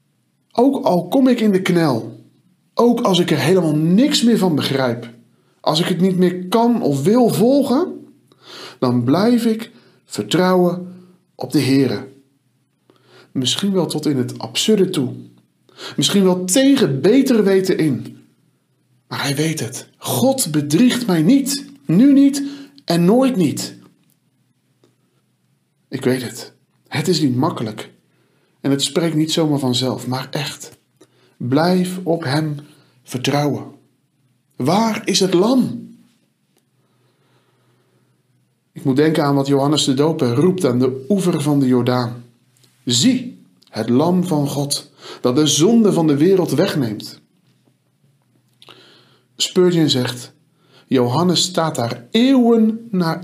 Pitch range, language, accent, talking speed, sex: 130-190 Hz, Dutch, Dutch, 130 wpm, male